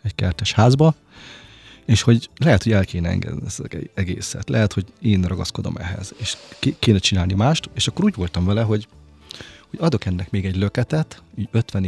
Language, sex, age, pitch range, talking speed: Hungarian, male, 30-49, 95-115 Hz, 175 wpm